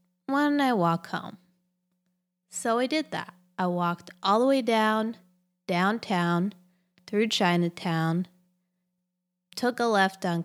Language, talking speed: English, 125 wpm